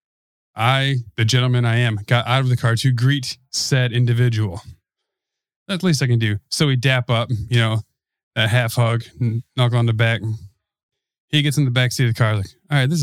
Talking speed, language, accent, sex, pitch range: 205 wpm, English, American, male, 105-130 Hz